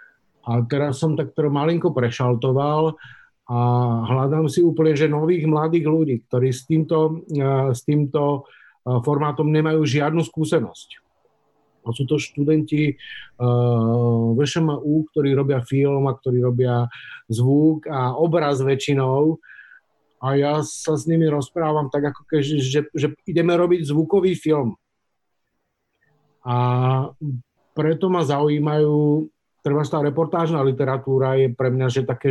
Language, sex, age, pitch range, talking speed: Slovak, male, 50-69, 130-155 Hz, 125 wpm